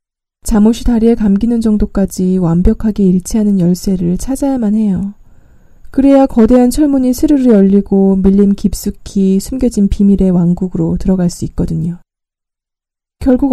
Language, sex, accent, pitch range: Korean, female, native, 190-245 Hz